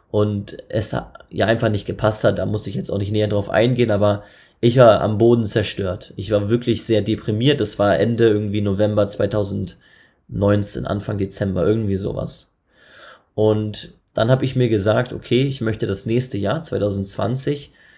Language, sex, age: German, male, 20-39